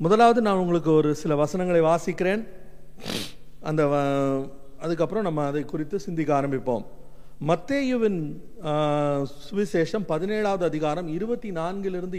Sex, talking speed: male, 100 wpm